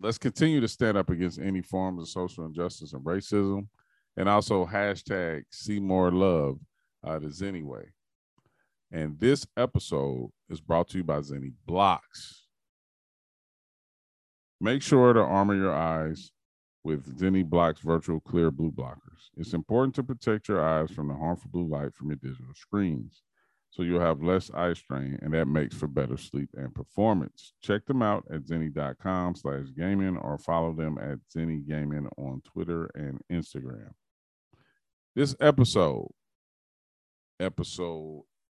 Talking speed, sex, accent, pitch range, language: 145 wpm, male, American, 80-100 Hz, English